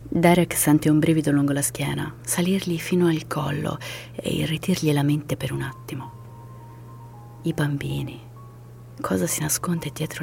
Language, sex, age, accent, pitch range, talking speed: Italian, female, 30-49, native, 130-165 Hz, 140 wpm